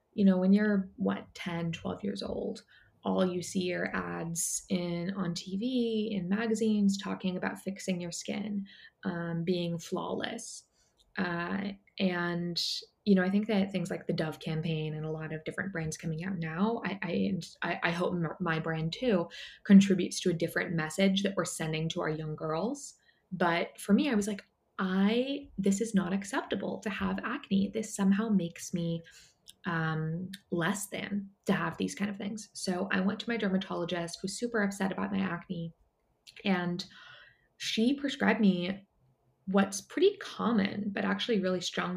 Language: English